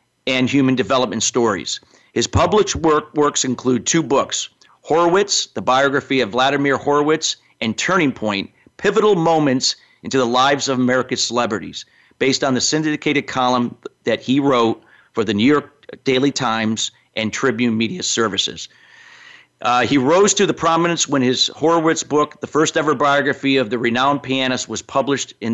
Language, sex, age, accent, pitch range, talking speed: English, male, 40-59, American, 125-155 Hz, 155 wpm